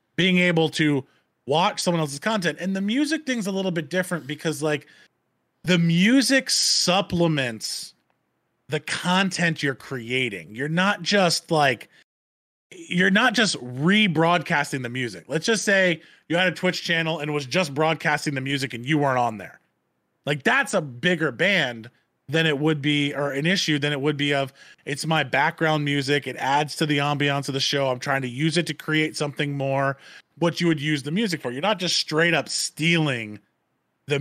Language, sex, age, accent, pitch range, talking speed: English, male, 20-39, American, 135-170 Hz, 185 wpm